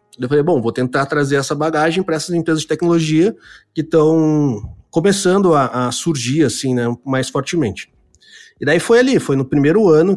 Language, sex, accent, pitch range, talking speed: Portuguese, male, Brazilian, 130-155 Hz, 185 wpm